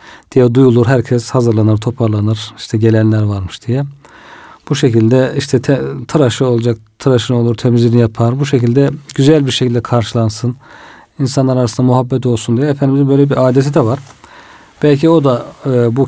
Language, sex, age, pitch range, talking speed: Turkish, male, 40-59, 120-140 Hz, 155 wpm